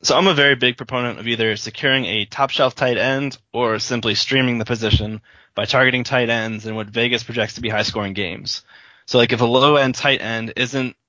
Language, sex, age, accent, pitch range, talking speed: English, male, 20-39, American, 105-125 Hz, 205 wpm